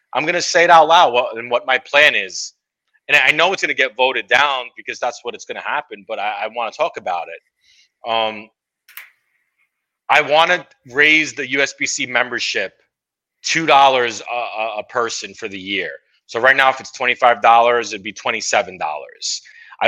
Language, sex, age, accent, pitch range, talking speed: English, male, 30-49, American, 110-140 Hz, 185 wpm